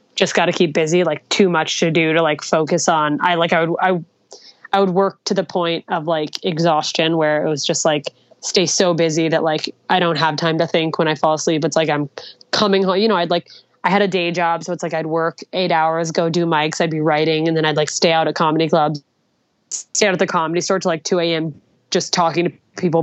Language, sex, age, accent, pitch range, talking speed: English, female, 20-39, American, 160-190 Hz, 255 wpm